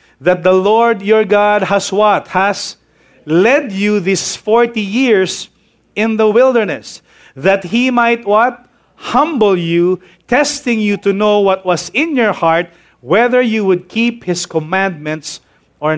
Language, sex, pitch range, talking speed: English, male, 205-265 Hz, 145 wpm